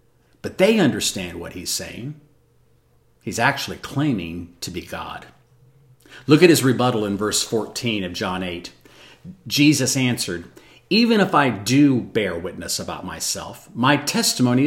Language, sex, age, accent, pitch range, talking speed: English, male, 50-69, American, 115-150 Hz, 140 wpm